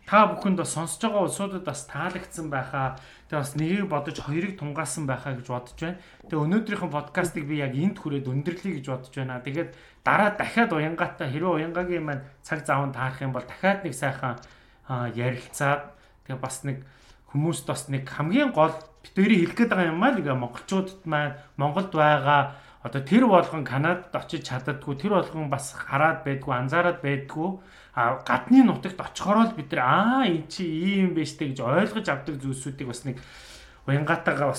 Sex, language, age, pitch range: male, Russian, 30-49, 135-180 Hz